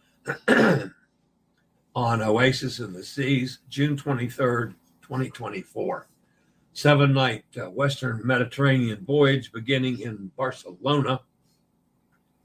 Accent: American